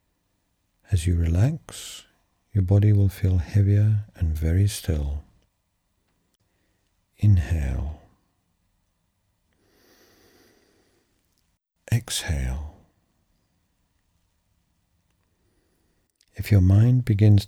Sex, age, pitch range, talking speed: male, 60-79, 90-105 Hz, 60 wpm